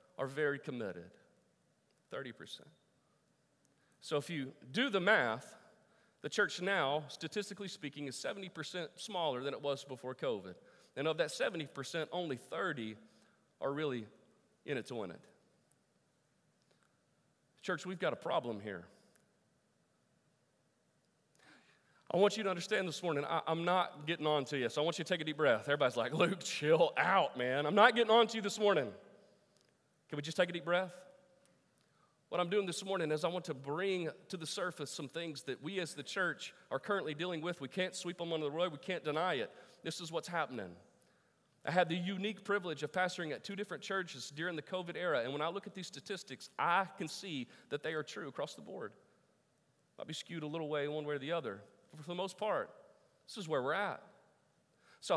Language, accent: English, American